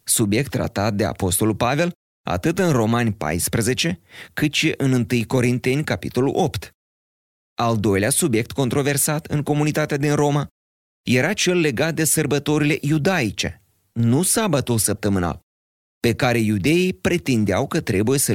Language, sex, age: Romanian, male, 30-49